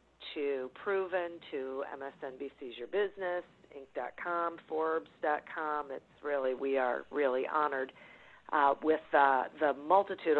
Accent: American